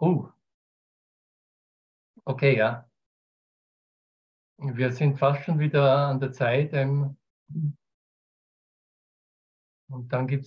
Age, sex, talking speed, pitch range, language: 50-69, male, 80 wpm, 125-150 Hz, German